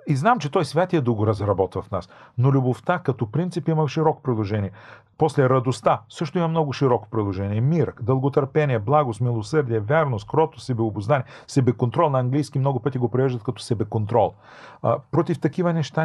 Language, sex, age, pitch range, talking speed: Bulgarian, male, 40-59, 115-145 Hz, 165 wpm